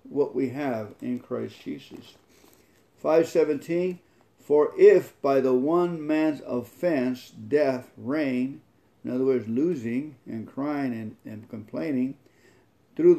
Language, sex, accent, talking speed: English, male, American, 120 wpm